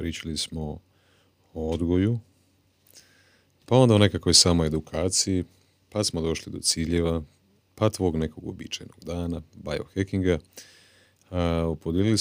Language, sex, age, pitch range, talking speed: Croatian, male, 40-59, 80-95 Hz, 110 wpm